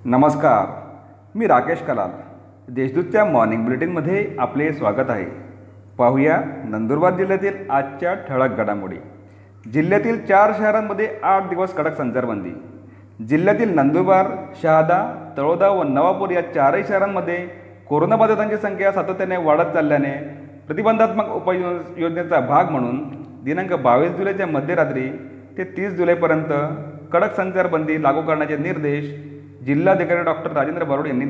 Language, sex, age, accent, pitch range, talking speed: Marathi, male, 40-59, native, 135-185 Hz, 110 wpm